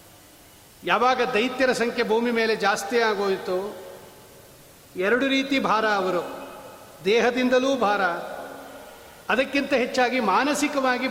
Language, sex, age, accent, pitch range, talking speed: Kannada, male, 40-59, native, 210-245 Hz, 85 wpm